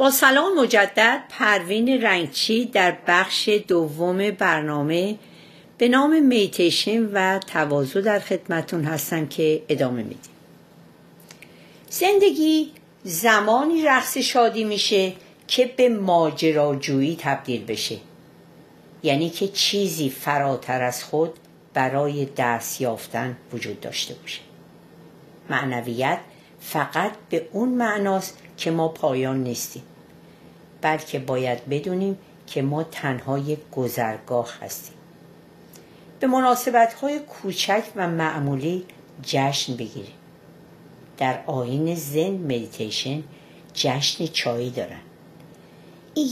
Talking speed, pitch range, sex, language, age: 95 wpm, 135-205 Hz, female, Persian, 50-69